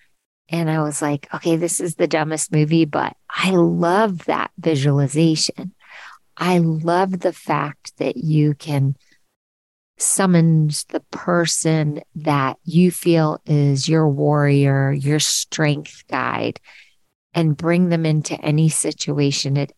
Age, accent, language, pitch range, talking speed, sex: 40-59, American, English, 145-170 Hz, 125 wpm, female